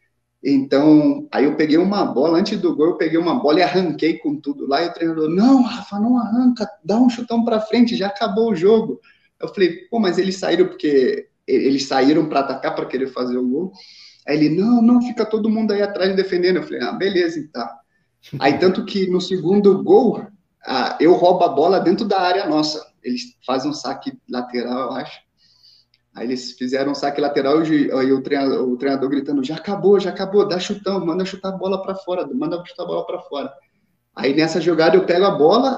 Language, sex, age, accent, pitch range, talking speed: Portuguese, male, 20-39, Brazilian, 150-225 Hz, 205 wpm